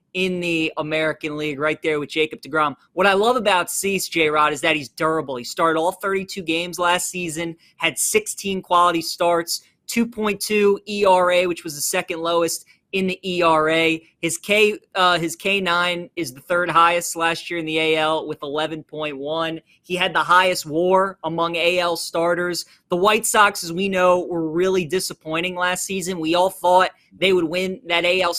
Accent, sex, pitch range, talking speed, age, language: American, male, 160-190 Hz, 170 wpm, 20-39, English